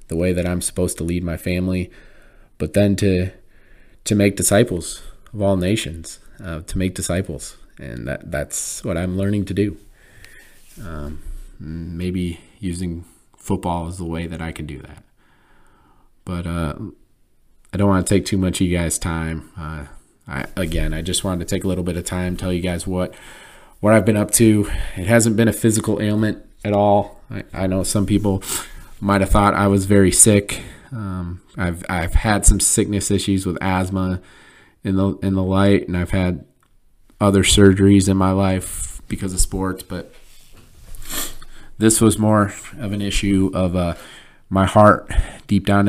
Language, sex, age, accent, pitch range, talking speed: English, male, 30-49, American, 90-100 Hz, 180 wpm